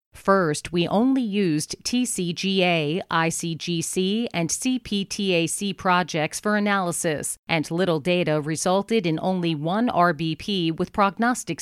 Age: 40-59